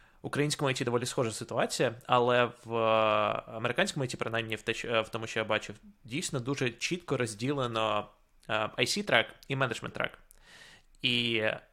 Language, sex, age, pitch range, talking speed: Ukrainian, male, 20-39, 115-145 Hz, 135 wpm